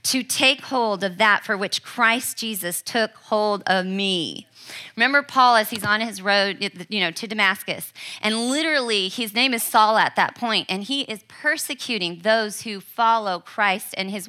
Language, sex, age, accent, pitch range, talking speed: English, female, 30-49, American, 190-250 Hz, 170 wpm